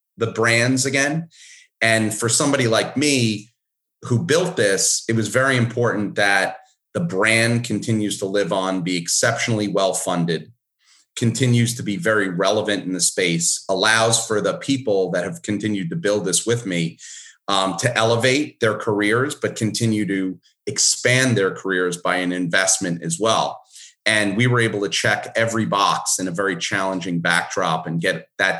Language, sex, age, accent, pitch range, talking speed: English, male, 30-49, American, 95-115 Hz, 160 wpm